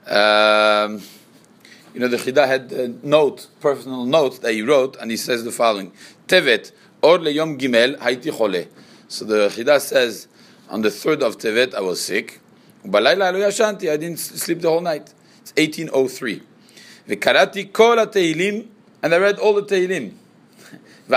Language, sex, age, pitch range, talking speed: English, male, 40-59, 125-190 Hz, 140 wpm